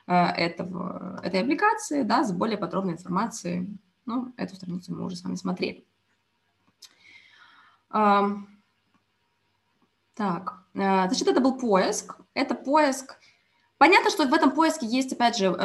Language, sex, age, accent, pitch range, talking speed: Russian, female, 20-39, native, 190-270 Hz, 120 wpm